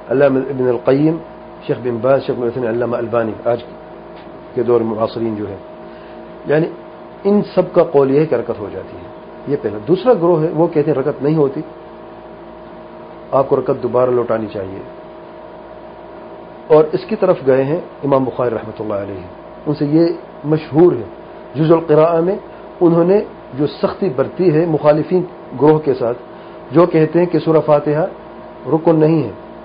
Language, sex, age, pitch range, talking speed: English, male, 40-59, 140-175 Hz, 160 wpm